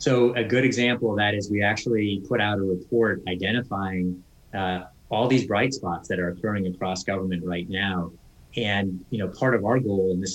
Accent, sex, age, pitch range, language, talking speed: American, male, 30-49, 95-115 Hz, English, 205 wpm